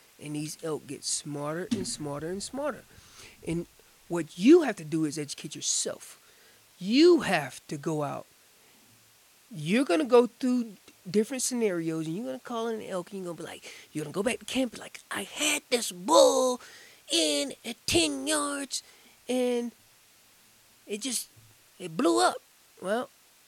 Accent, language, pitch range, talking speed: American, English, 165-240 Hz, 170 wpm